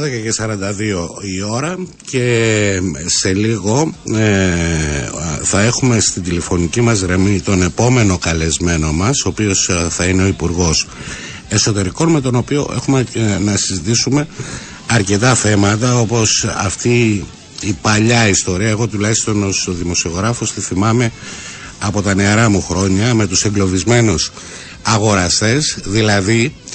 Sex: male